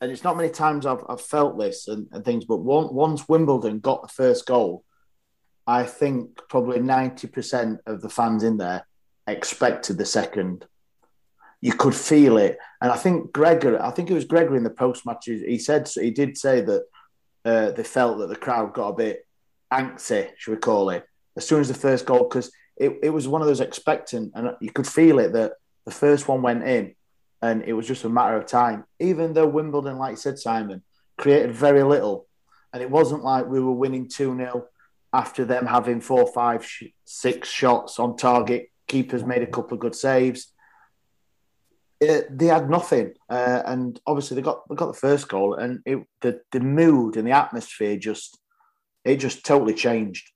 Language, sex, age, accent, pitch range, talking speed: English, male, 30-49, British, 120-150 Hz, 195 wpm